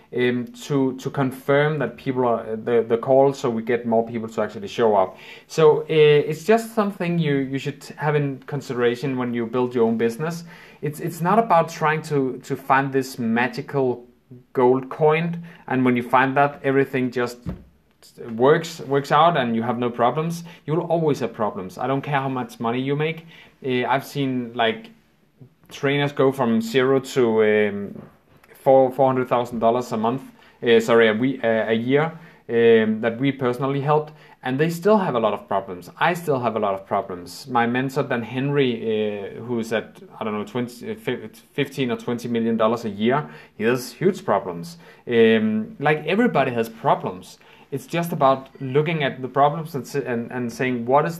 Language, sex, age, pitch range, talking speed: English, male, 30-49, 120-150 Hz, 185 wpm